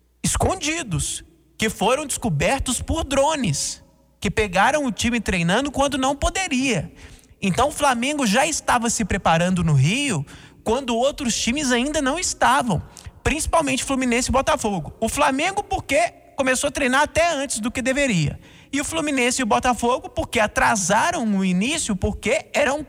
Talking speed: 145 wpm